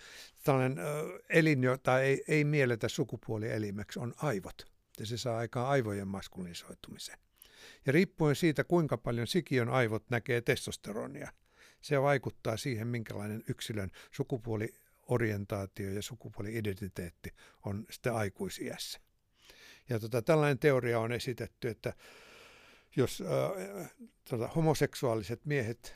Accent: native